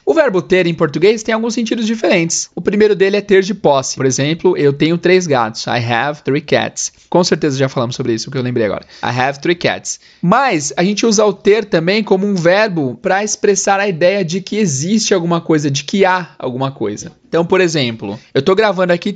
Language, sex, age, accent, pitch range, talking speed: Portuguese, male, 20-39, Brazilian, 140-195 Hz, 220 wpm